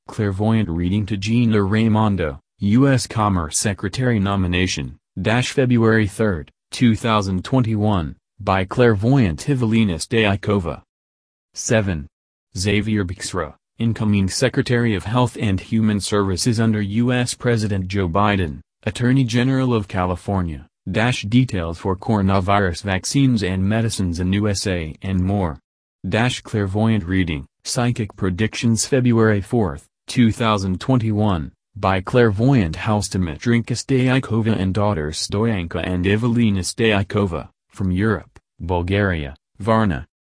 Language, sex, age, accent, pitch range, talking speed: English, male, 30-49, American, 95-115 Hz, 105 wpm